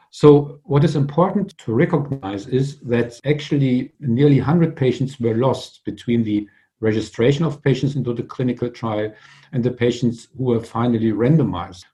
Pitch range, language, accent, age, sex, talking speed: 110-140 Hz, English, German, 50-69, male, 150 wpm